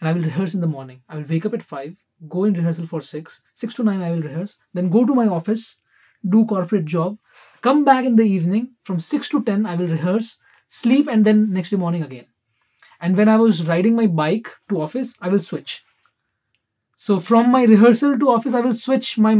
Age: 20-39